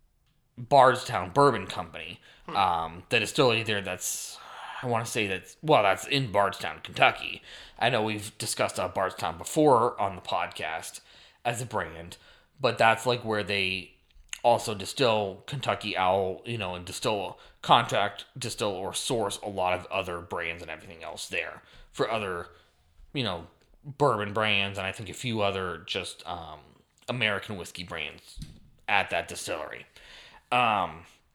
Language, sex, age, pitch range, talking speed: English, male, 20-39, 95-120 Hz, 150 wpm